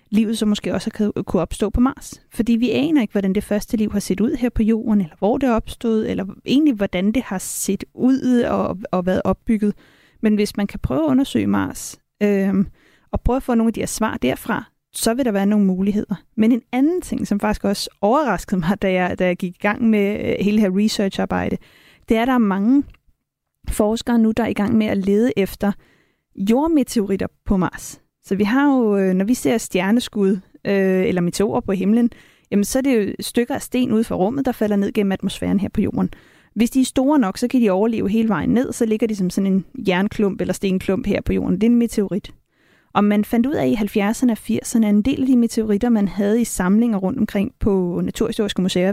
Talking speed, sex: 230 wpm, female